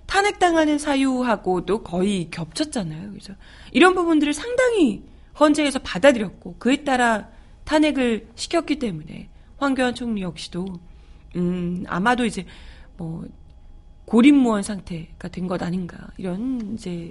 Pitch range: 185-265 Hz